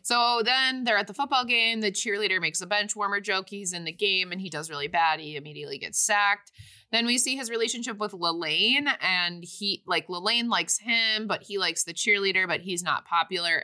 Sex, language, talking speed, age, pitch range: female, English, 215 wpm, 20-39, 175-215 Hz